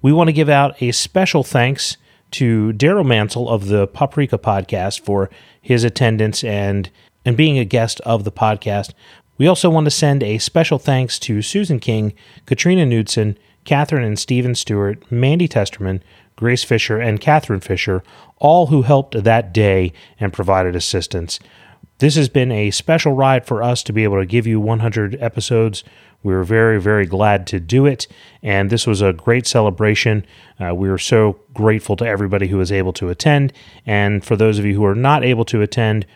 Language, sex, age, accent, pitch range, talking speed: English, male, 30-49, American, 100-135 Hz, 185 wpm